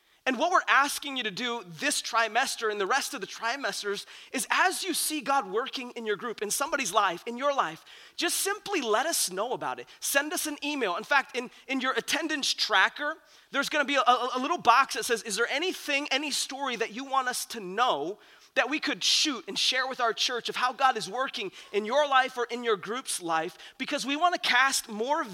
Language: English